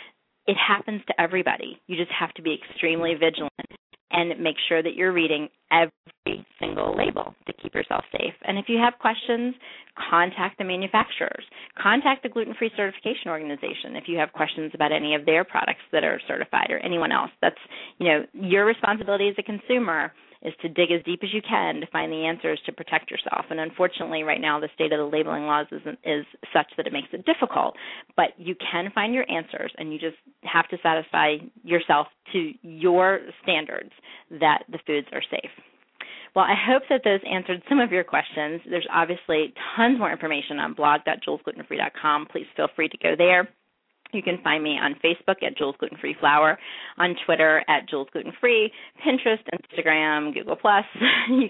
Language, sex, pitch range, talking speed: English, female, 160-205 Hz, 180 wpm